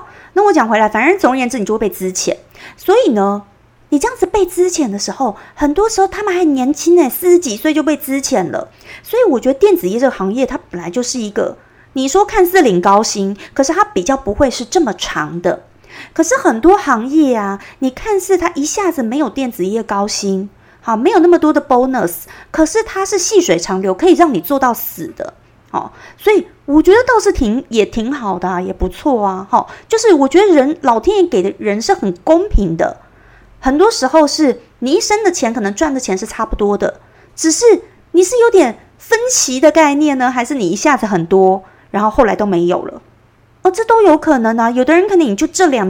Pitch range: 220-360 Hz